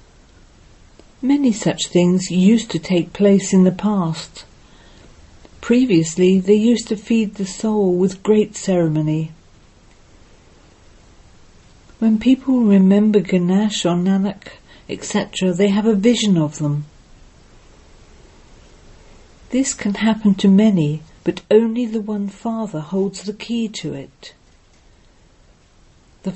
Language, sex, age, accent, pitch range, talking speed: English, female, 50-69, British, 155-210 Hz, 110 wpm